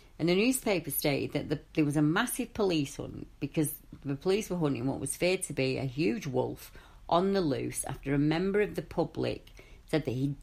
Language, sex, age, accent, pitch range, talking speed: English, female, 40-59, British, 135-165 Hz, 205 wpm